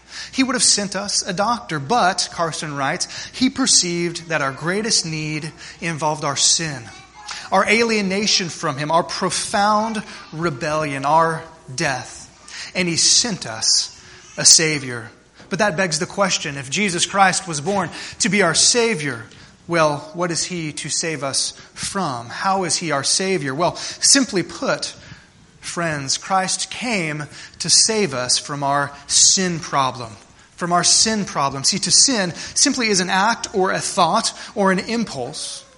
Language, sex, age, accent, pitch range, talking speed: English, male, 30-49, American, 155-195 Hz, 155 wpm